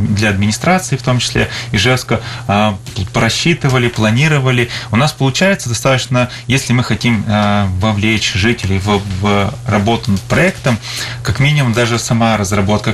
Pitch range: 110-125 Hz